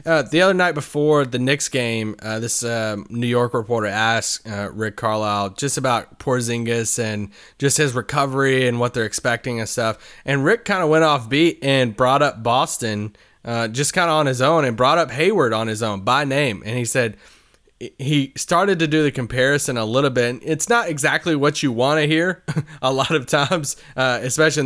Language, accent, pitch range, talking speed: English, American, 115-145 Hz, 205 wpm